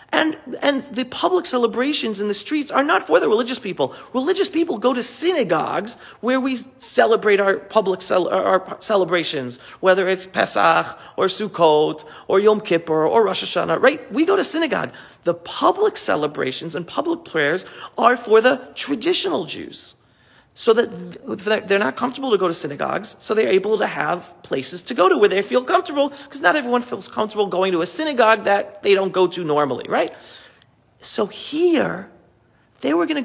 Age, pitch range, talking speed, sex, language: 40-59, 190-295 Hz, 175 wpm, male, English